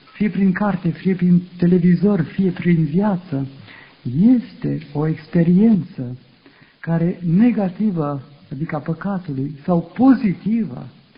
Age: 60-79